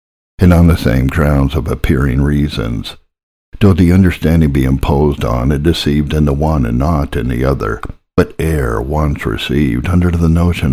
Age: 60-79